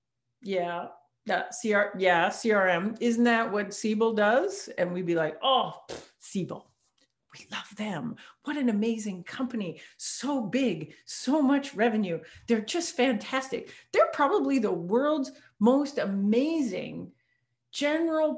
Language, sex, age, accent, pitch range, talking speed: English, female, 50-69, American, 175-260 Hz, 125 wpm